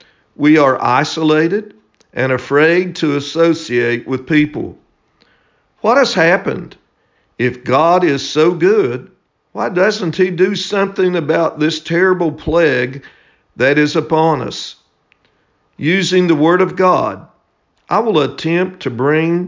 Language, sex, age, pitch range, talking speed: English, male, 50-69, 140-180 Hz, 125 wpm